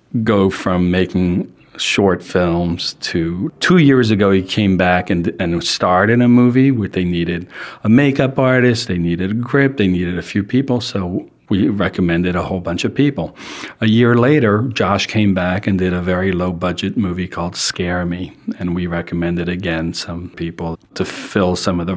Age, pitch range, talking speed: 40-59, 90-105 Hz, 180 wpm